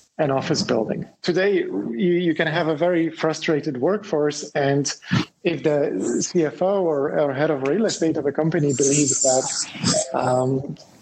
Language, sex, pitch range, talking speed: English, male, 145-175 Hz, 150 wpm